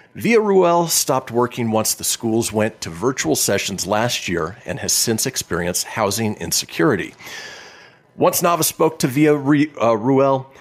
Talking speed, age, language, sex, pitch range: 140 wpm, 40-59, English, male, 100-155 Hz